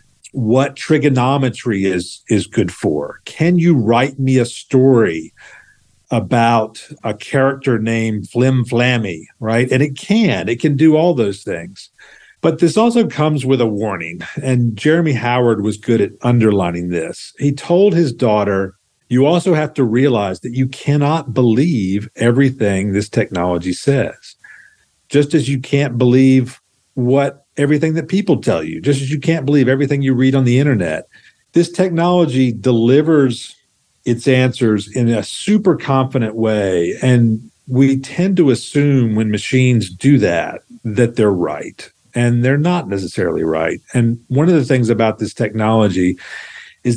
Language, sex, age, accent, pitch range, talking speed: English, male, 50-69, American, 110-140 Hz, 150 wpm